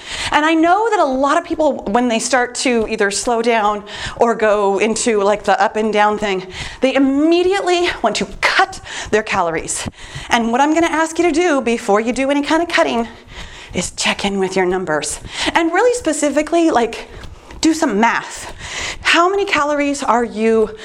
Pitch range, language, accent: 215-310 Hz, English, American